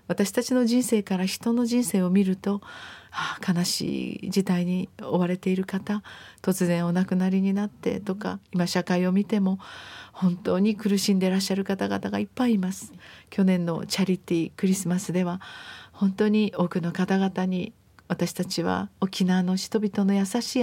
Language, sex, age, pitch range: Japanese, female, 40-59, 185-230 Hz